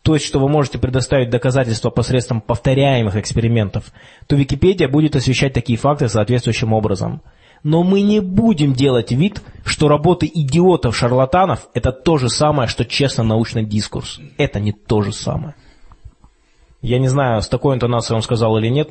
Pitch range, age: 115-150 Hz, 20-39